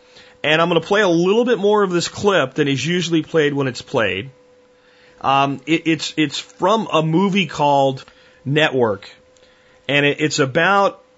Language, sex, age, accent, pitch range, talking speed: English, male, 40-59, American, 120-160 Hz, 160 wpm